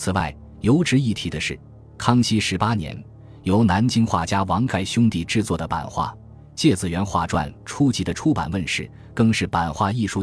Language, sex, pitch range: Chinese, male, 85-115 Hz